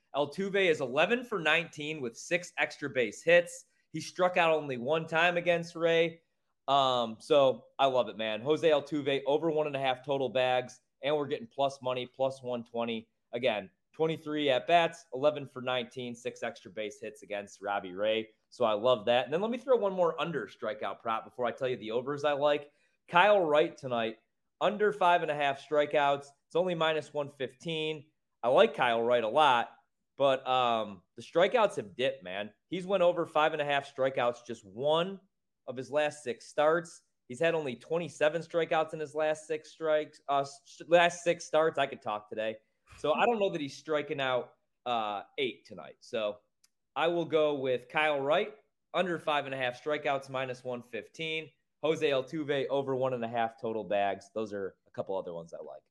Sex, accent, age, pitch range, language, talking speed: male, American, 30-49, 125-160 Hz, English, 190 wpm